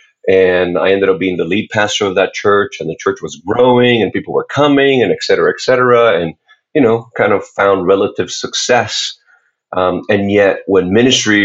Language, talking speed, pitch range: English, 200 wpm, 90-135 Hz